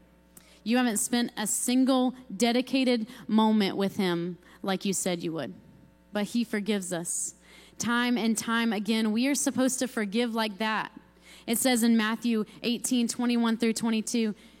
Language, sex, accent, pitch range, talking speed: English, female, American, 195-245 Hz, 150 wpm